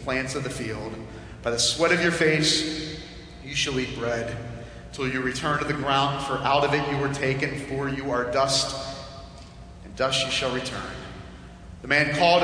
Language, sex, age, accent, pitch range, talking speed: English, male, 30-49, American, 130-160 Hz, 190 wpm